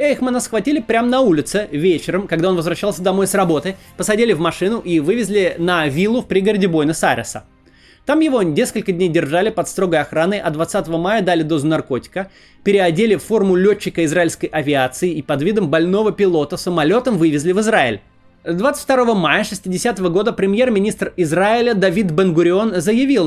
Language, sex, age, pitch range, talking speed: Russian, male, 20-39, 155-205 Hz, 155 wpm